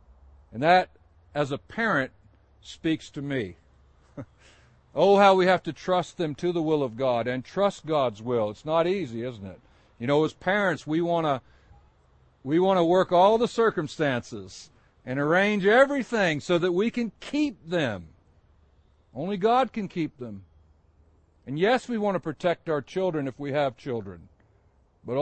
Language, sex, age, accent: English, male, 60-79, American